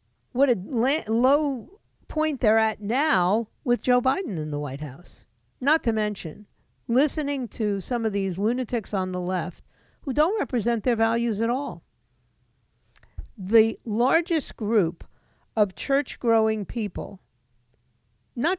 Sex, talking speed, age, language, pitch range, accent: female, 130 wpm, 50-69, English, 185-255 Hz, American